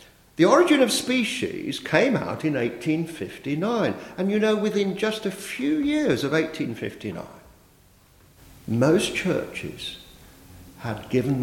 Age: 50-69